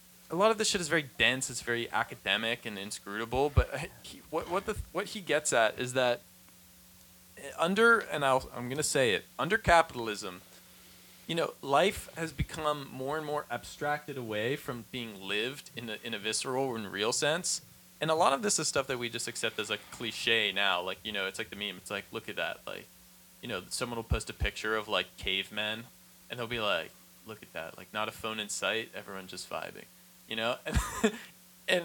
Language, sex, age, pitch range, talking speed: English, male, 20-39, 110-155 Hz, 215 wpm